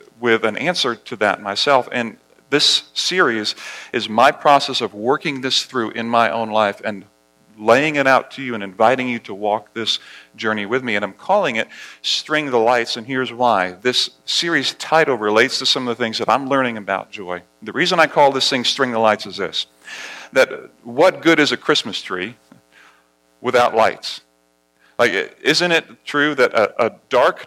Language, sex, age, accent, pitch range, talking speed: English, male, 40-59, American, 105-135 Hz, 190 wpm